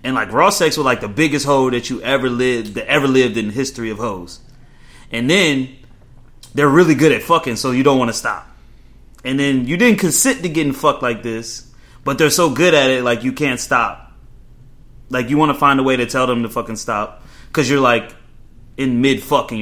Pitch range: 115-140 Hz